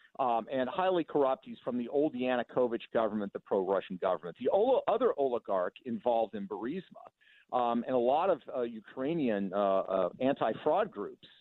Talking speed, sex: 160 wpm, male